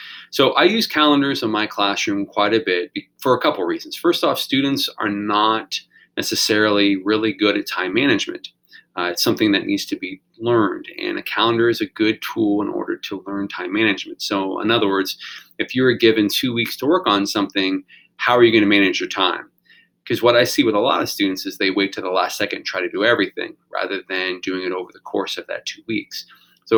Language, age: English, 30-49